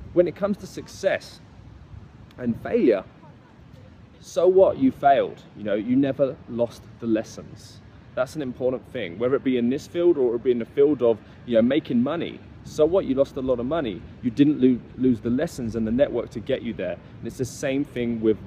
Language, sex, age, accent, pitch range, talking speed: English, male, 20-39, British, 120-160 Hz, 210 wpm